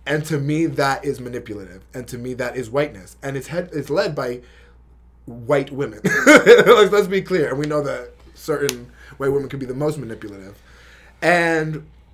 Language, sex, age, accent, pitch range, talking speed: English, male, 20-39, American, 110-145 Hz, 185 wpm